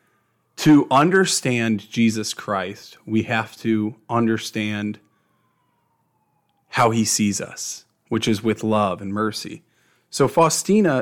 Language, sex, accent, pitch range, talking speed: English, male, American, 105-120 Hz, 110 wpm